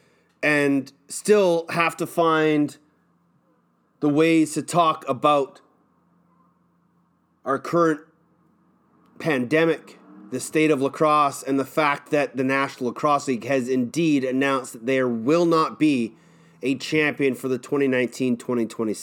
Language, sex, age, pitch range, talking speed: English, male, 30-49, 135-165 Hz, 120 wpm